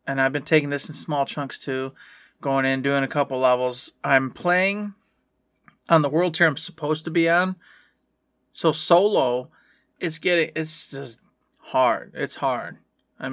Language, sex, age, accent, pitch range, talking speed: English, male, 20-39, American, 130-155 Hz, 160 wpm